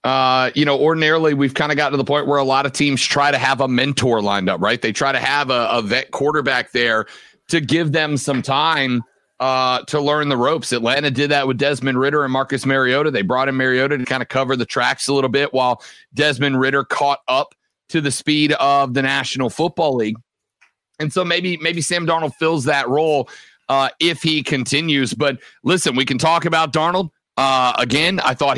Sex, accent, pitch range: male, American, 135-165 Hz